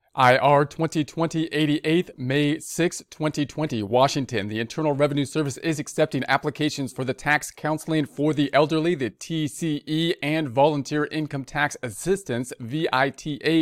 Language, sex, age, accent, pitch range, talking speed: English, male, 40-59, American, 135-160 Hz, 130 wpm